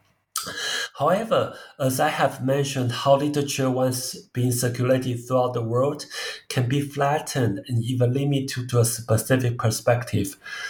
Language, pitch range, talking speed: English, 125-150 Hz, 135 wpm